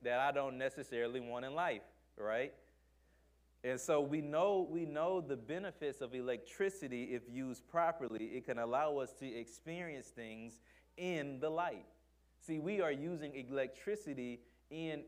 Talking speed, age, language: 145 wpm, 30-49, English